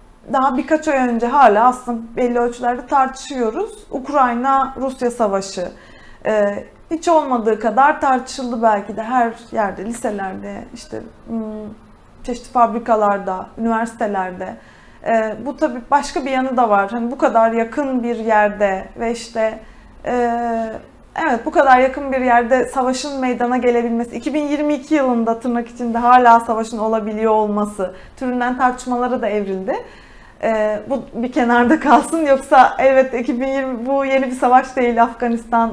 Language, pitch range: Turkish, 230-275 Hz